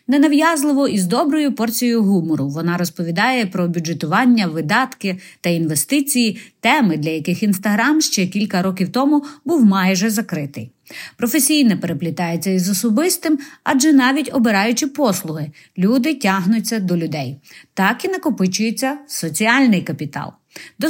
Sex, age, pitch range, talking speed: female, 30-49, 170-255 Hz, 120 wpm